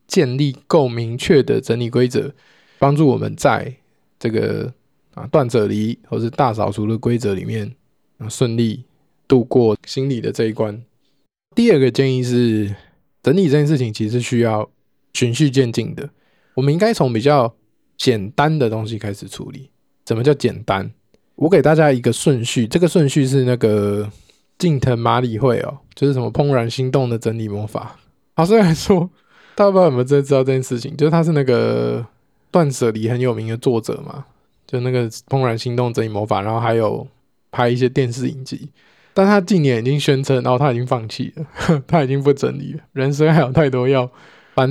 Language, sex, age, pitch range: Chinese, male, 20-39, 115-150 Hz